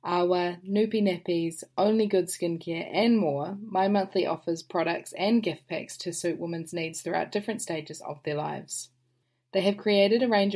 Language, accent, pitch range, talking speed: English, Australian, 170-200 Hz, 175 wpm